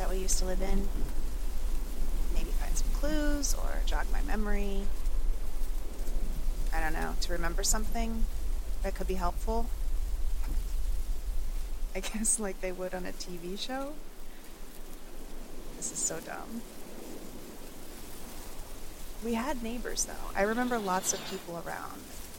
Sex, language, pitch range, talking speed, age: female, English, 175-225 Hz, 125 wpm, 30-49